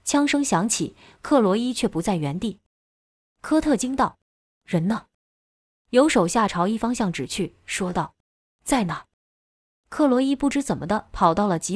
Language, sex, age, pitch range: Chinese, female, 20-39, 160-235 Hz